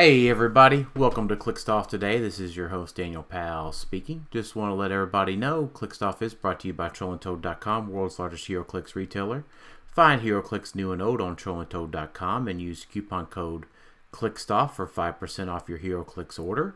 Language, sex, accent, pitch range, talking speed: English, male, American, 85-105 Hz, 170 wpm